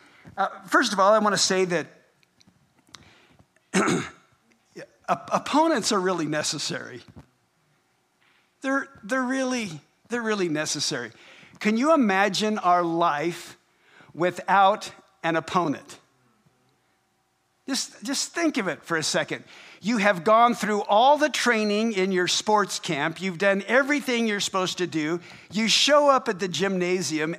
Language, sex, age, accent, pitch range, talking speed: English, male, 50-69, American, 170-240 Hz, 130 wpm